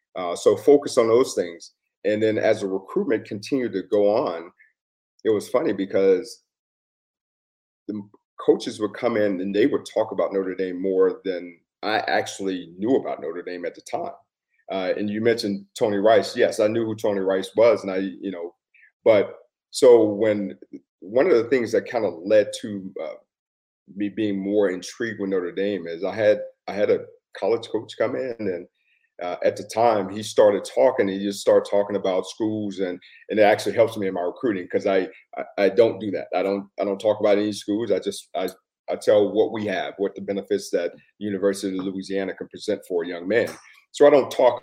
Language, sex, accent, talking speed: English, male, American, 205 wpm